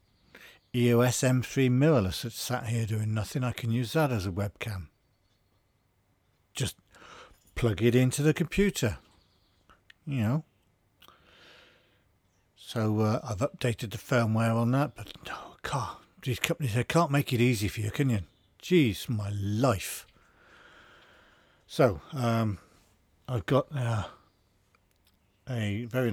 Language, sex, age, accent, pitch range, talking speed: English, male, 50-69, British, 100-125 Hz, 130 wpm